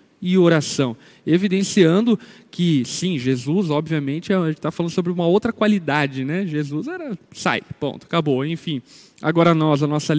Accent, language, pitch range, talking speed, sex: Brazilian, Portuguese, 145-180 Hz, 155 wpm, male